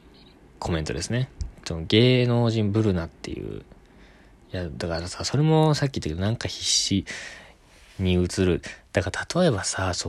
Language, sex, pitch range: Japanese, male, 85-115 Hz